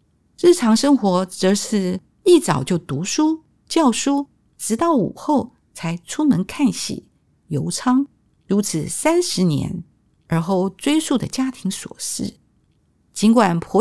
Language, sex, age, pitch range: Chinese, female, 50-69, 175-260 Hz